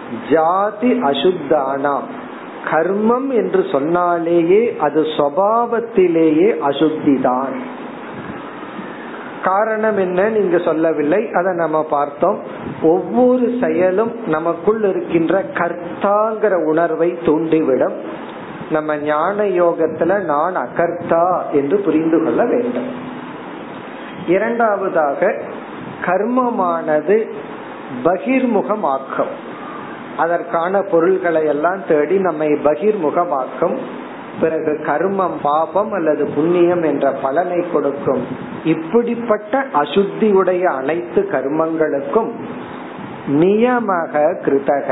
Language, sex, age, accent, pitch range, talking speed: Tamil, male, 50-69, native, 155-205 Hz, 65 wpm